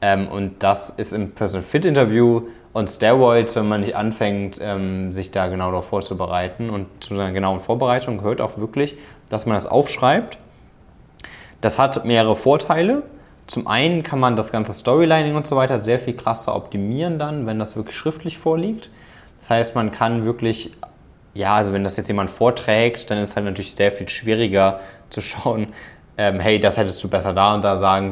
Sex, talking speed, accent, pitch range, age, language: male, 175 wpm, German, 100-120 Hz, 20-39, German